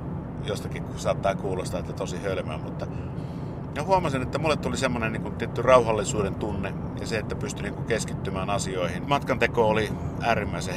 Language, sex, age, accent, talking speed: Finnish, male, 50-69, native, 155 wpm